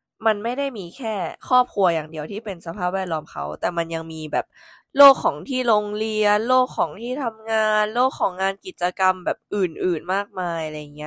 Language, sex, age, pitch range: Thai, female, 20-39, 165-225 Hz